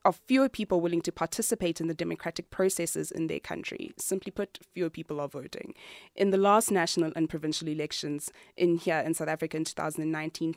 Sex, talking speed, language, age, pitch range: female, 185 wpm, English, 20-39, 165-200 Hz